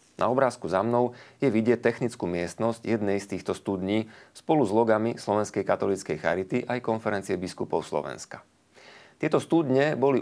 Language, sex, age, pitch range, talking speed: Slovak, male, 30-49, 100-125 Hz, 145 wpm